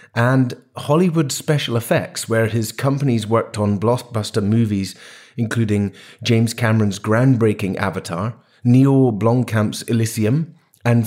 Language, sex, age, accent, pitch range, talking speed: English, male, 30-49, British, 110-135 Hz, 110 wpm